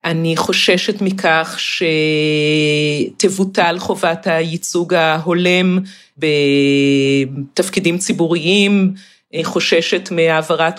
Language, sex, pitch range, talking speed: Hebrew, female, 165-200 Hz, 60 wpm